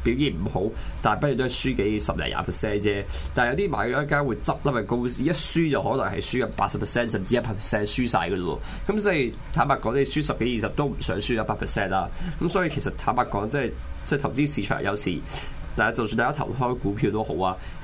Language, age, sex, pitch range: Chinese, 20-39, male, 100-135 Hz